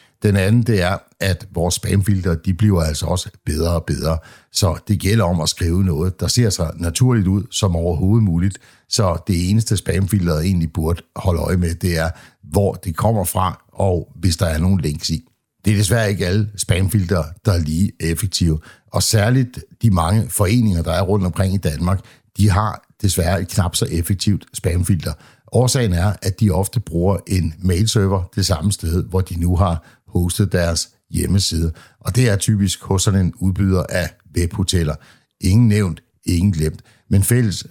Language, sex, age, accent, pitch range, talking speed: Danish, male, 60-79, native, 85-105 Hz, 180 wpm